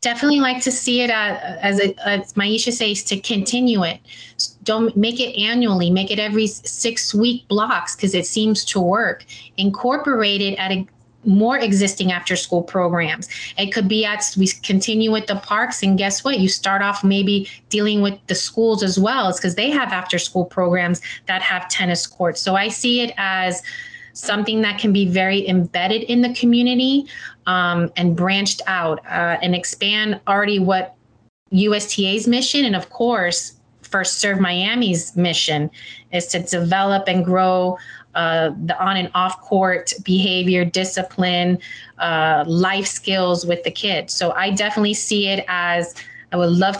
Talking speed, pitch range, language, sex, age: 165 wpm, 180-215 Hz, English, female, 30-49